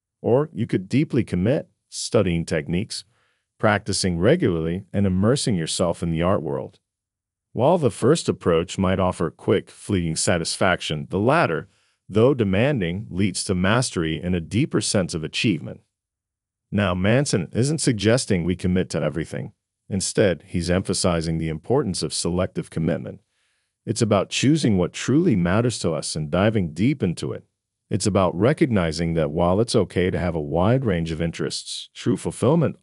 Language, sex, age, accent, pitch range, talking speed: English, male, 40-59, American, 85-110 Hz, 150 wpm